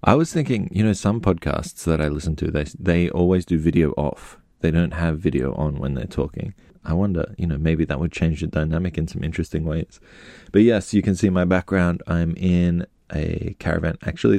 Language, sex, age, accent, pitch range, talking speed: English, male, 20-39, Australian, 80-100 Hz, 215 wpm